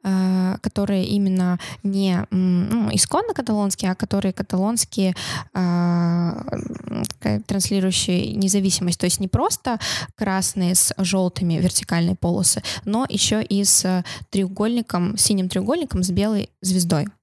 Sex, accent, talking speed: female, native, 115 wpm